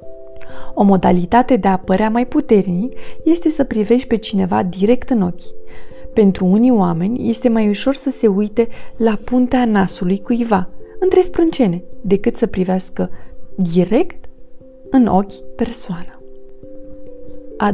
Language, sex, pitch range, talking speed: Romanian, female, 185-255 Hz, 130 wpm